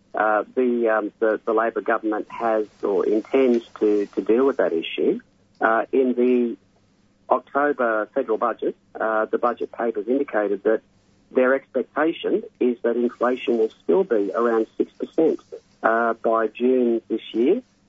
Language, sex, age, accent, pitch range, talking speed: English, male, 40-59, Australian, 110-130 Hz, 150 wpm